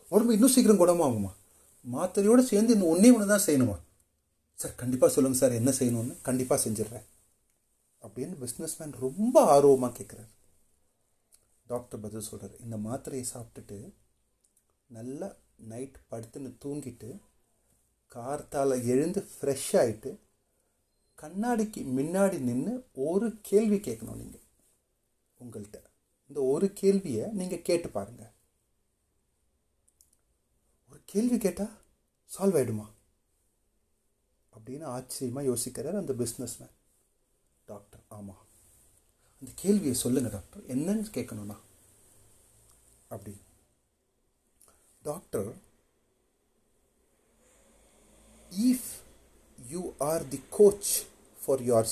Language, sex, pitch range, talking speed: Tamil, male, 105-165 Hz, 85 wpm